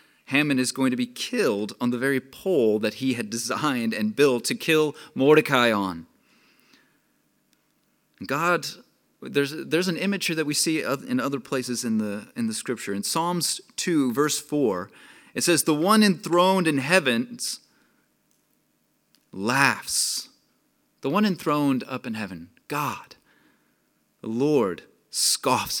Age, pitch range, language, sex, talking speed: 30-49, 125-180 Hz, English, male, 135 wpm